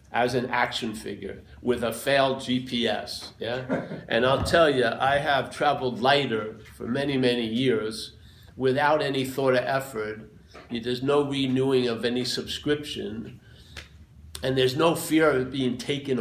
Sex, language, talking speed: male, English, 150 wpm